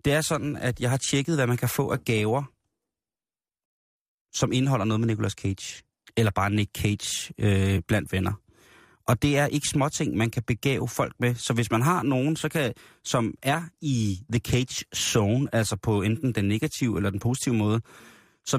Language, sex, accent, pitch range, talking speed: Danish, male, native, 105-130 Hz, 190 wpm